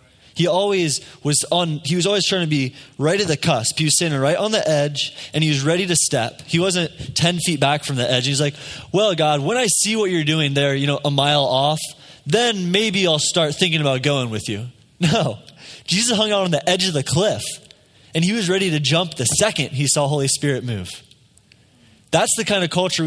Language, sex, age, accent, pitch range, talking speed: English, male, 20-39, American, 135-175 Hz, 230 wpm